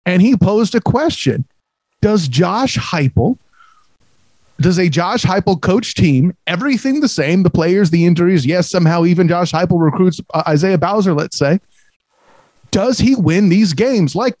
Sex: male